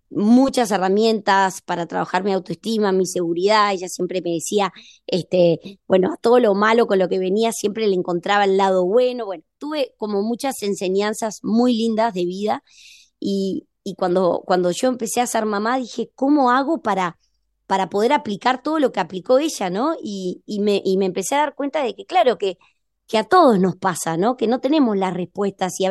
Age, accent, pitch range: 20-39, Argentinian, 185-240 Hz